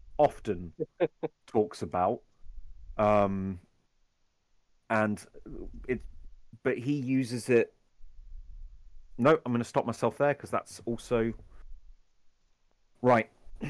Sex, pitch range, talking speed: male, 110-145 Hz, 90 wpm